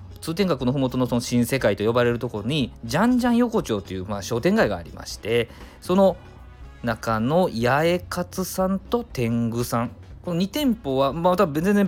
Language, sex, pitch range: Japanese, male, 100-160 Hz